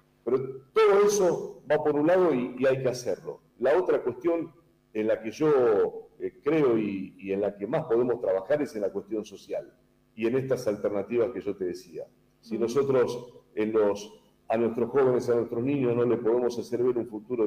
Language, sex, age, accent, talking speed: Spanish, male, 40-59, Argentinian, 190 wpm